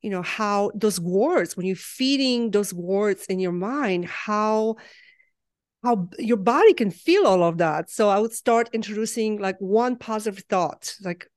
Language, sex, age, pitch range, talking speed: English, female, 40-59, 195-240 Hz, 170 wpm